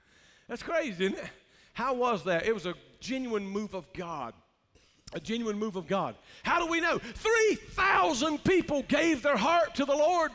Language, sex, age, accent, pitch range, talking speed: English, male, 50-69, American, 230-320 Hz, 180 wpm